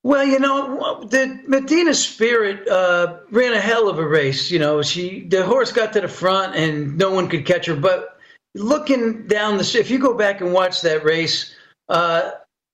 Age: 50-69